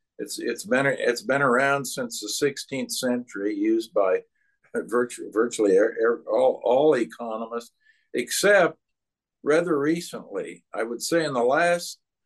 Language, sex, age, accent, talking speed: English, male, 60-79, American, 125 wpm